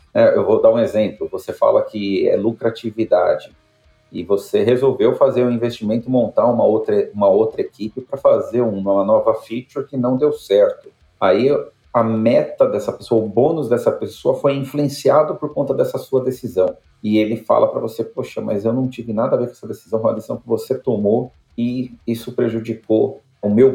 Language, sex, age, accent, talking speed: Portuguese, male, 40-59, Brazilian, 185 wpm